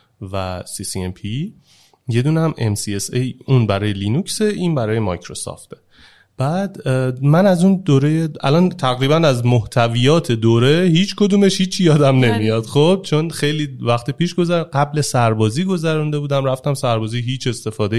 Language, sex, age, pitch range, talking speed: Persian, male, 30-49, 120-165 Hz, 135 wpm